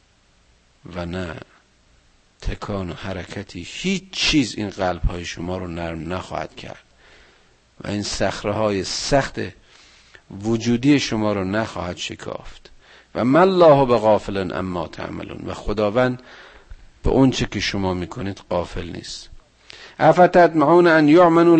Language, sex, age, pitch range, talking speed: Persian, male, 50-69, 105-145 Hz, 120 wpm